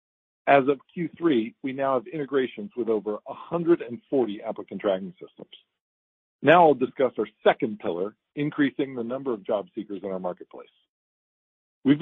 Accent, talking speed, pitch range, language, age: American, 145 wpm, 105-145 Hz, English, 50-69